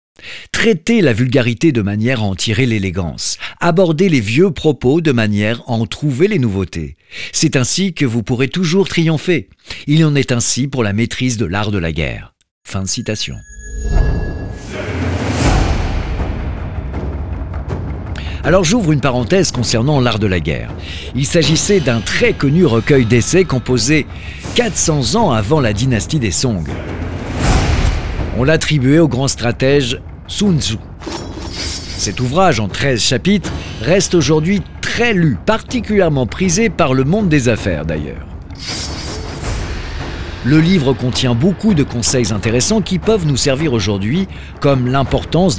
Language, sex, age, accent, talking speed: French, male, 50-69, French, 135 wpm